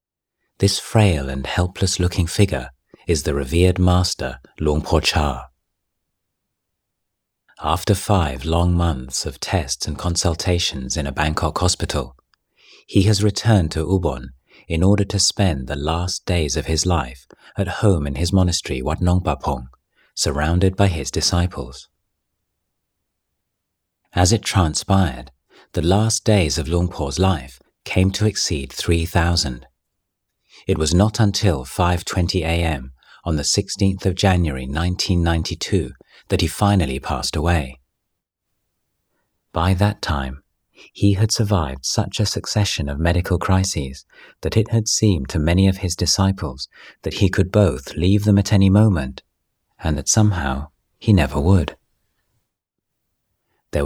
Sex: male